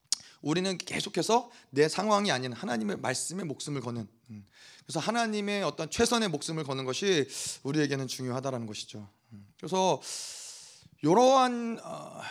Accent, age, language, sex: native, 30-49, Korean, male